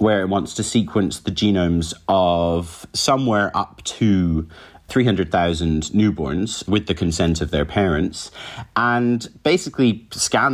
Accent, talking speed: British, 125 wpm